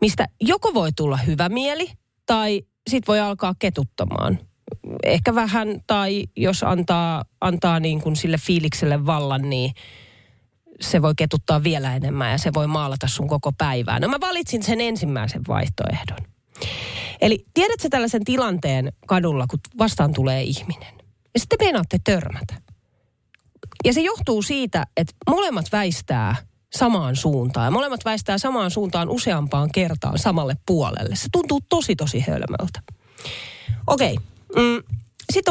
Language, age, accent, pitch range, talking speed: Finnish, 30-49, native, 130-220 Hz, 130 wpm